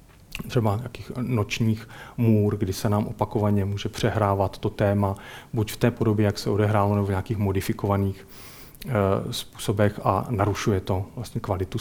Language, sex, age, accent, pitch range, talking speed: Czech, male, 40-59, native, 100-115 Hz, 155 wpm